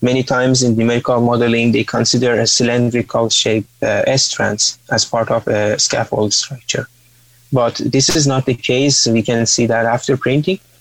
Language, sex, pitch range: English, male, 115-135 Hz